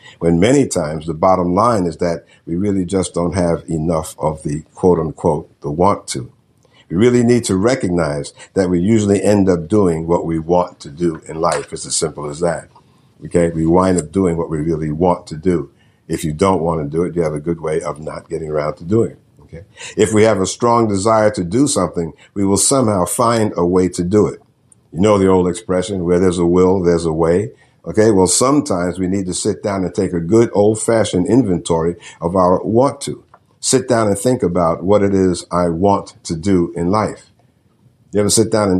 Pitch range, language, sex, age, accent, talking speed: 85-105 Hz, English, male, 60-79, American, 220 wpm